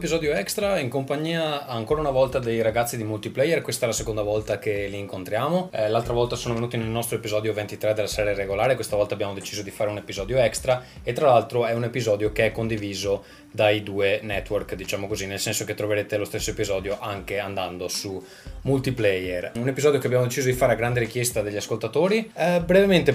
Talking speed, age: 200 wpm, 20-39